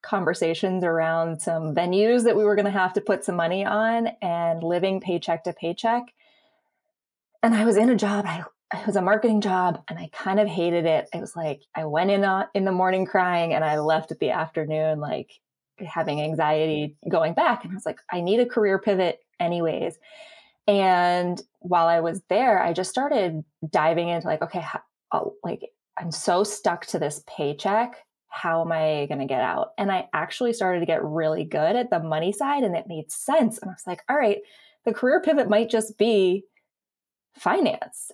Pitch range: 165-215 Hz